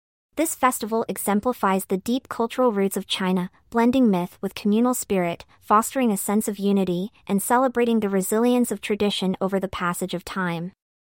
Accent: American